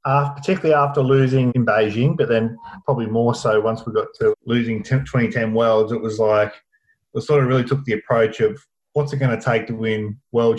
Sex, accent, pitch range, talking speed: male, Australian, 110-130 Hz, 215 wpm